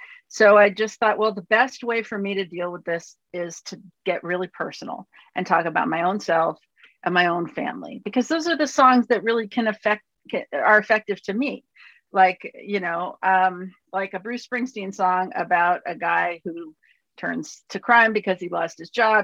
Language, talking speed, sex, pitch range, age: English, 195 wpm, female, 175-215 Hz, 40-59